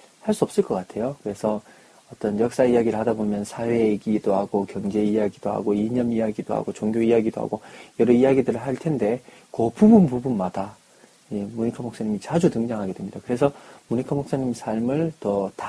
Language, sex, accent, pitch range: Korean, male, native, 110-150 Hz